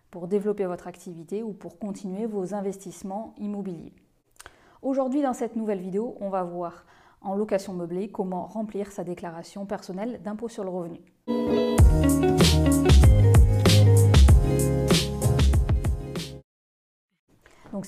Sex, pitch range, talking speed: female, 175-205 Hz, 105 wpm